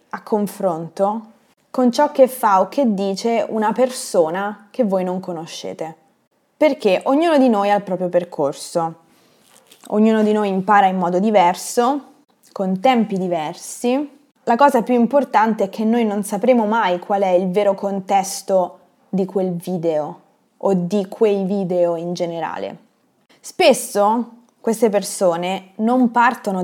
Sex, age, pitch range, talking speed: female, 20-39, 190-245 Hz, 140 wpm